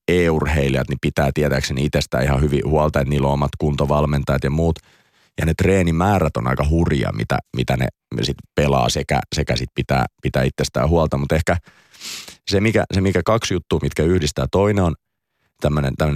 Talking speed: 175 wpm